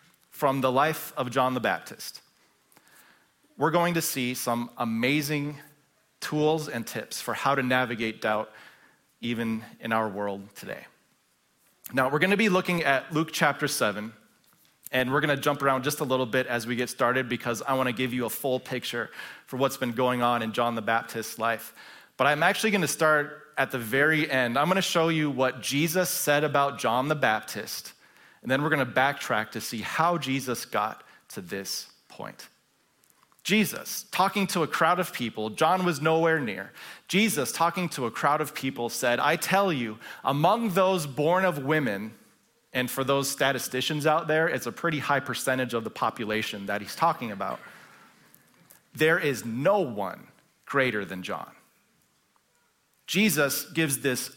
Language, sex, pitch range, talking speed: English, male, 125-160 Hz, 175 wpm